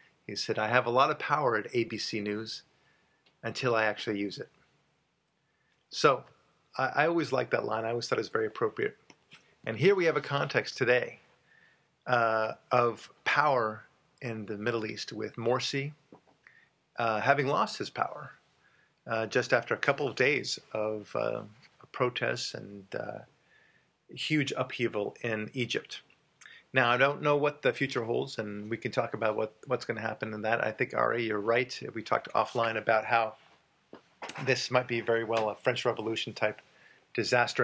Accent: American